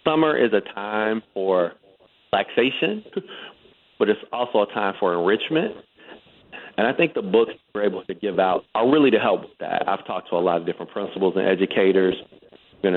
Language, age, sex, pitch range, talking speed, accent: English, 40-59, male, 95-120 Hz, 185 wpm, American